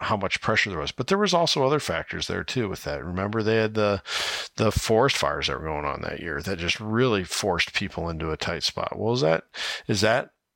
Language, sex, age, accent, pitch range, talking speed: English, male, 40-59, American, 90-110 Hz, 240 wpm